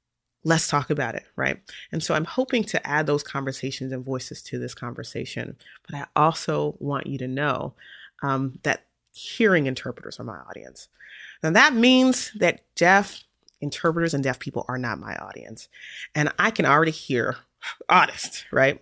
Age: 30-49